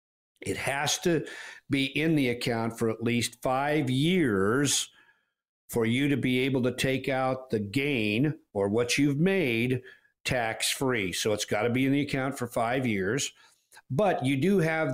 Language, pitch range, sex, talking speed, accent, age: English, 115-140 Hz, male, 170 wpm, American, 50-69